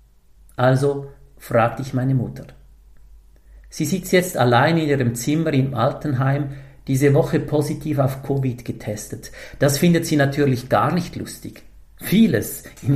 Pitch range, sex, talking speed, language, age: 110-140 Hz, male, 135 wpm, German, 50-69